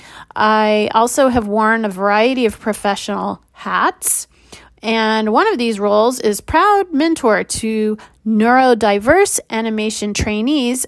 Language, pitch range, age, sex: English, 215-270 Hz, 30-49, female